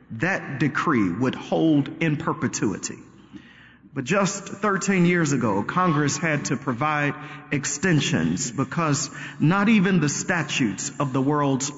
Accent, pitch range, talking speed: American, 130-170 Hz, 120 wpm